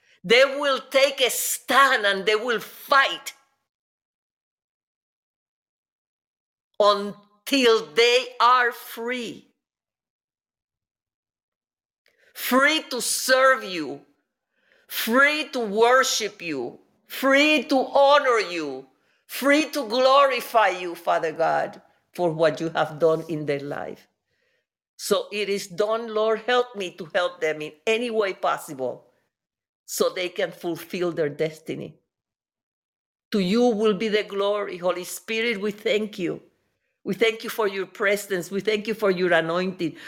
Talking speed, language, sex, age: 125 wpm, English, female, 50-69